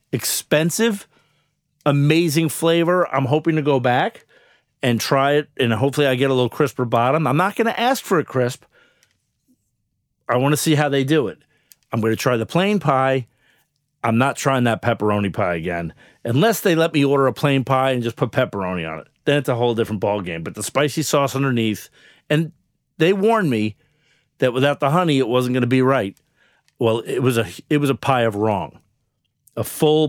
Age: 40-59